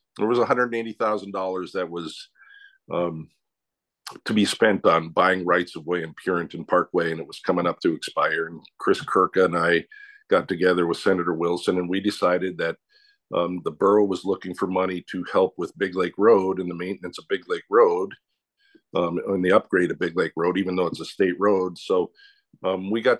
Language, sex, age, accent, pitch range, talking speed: English, male, 50-69, American, 90-135 Hz, 195 wpm